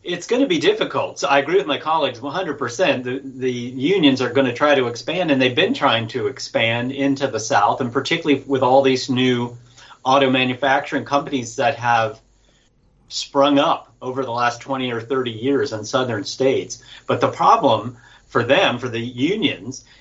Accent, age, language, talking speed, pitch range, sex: American, 40-59, English, 180 wpm, 120-140 Hz, male